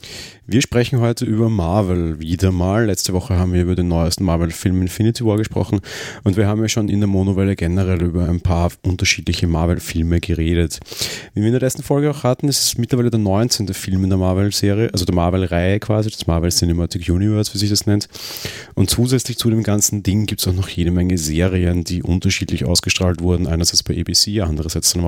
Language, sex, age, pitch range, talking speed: German, male, 30-49, 90-105 Hz, 200 wpm